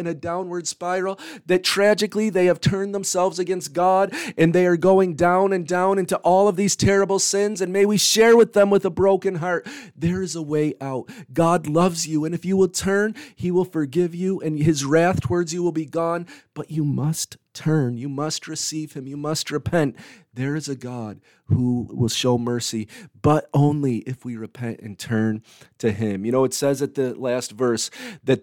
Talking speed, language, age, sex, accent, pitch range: 205 wpm, English, 40-59, male, American, 125-170 Hz